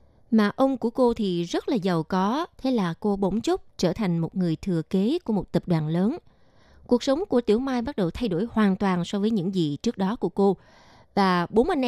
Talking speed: 235 wpm